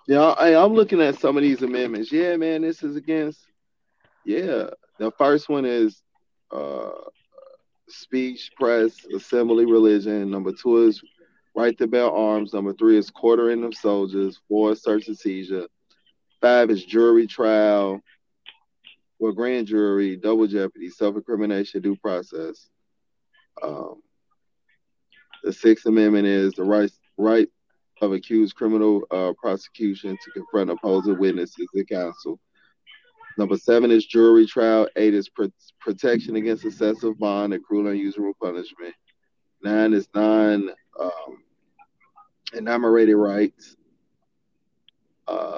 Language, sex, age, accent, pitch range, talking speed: English, male, 30-49, American, 100-120 Hz, 125 wpm